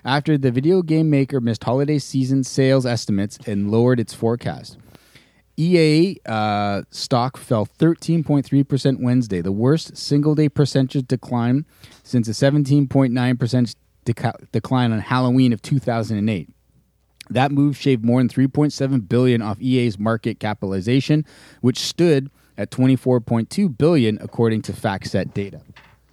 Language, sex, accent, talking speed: English, male, American, 130 wpm